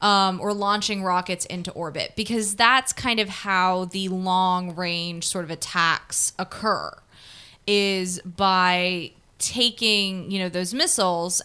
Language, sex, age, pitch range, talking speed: English, female, 20-39, 180-215 Hz, 125 wpm